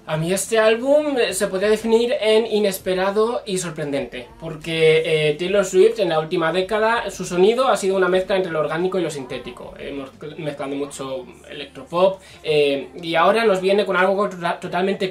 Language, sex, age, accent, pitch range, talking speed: Spanish, male, 20-39, Spanish, 150-200 Hz, 170 wpm